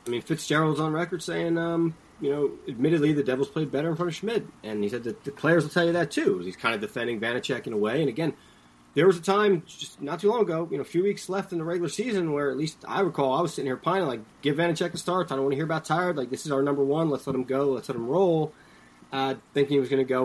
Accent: American